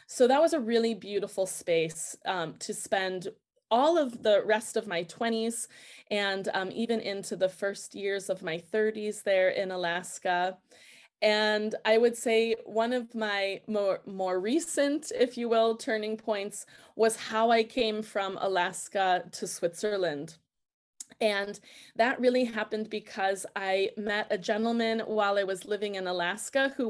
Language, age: English, 20-39